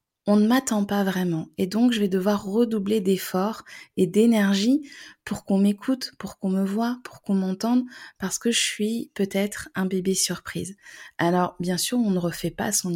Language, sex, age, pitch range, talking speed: French, female, 20-39, 185-220 Hz, 185 wpm